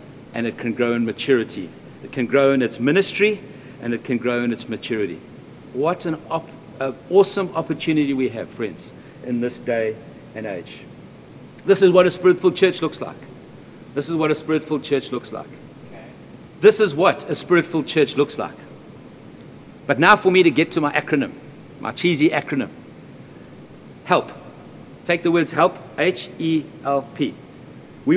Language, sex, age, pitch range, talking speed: English, male, 60-79, 135-175 Hz, 160 wpm